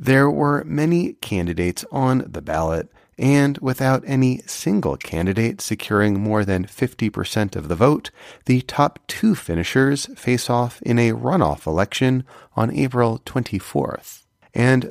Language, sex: English, male